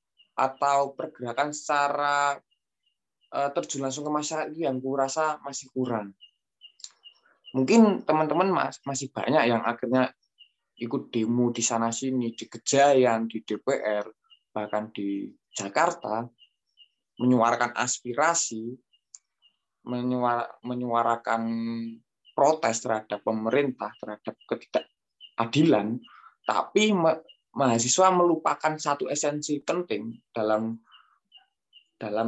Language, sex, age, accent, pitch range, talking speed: Indonesian, male, 20-39, native, 115-150 Hz, 80 wpm